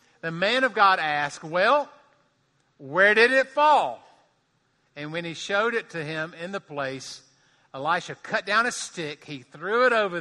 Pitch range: 135-170 Hz